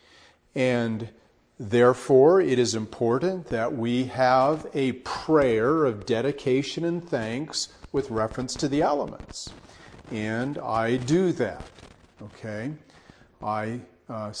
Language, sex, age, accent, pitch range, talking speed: English, male, 50-69, American, 110-140 Hz, 110 wpm